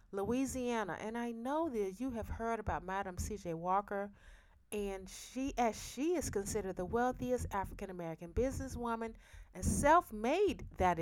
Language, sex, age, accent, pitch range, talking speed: English, female, 30-49, American, 185-250 Hz, 135 wpm